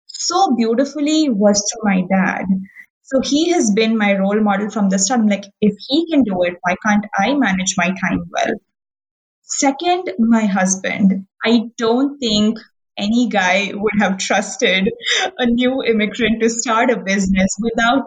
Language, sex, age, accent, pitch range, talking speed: English, female, 20-39, Indian, 195-250 Hz, 160 wpm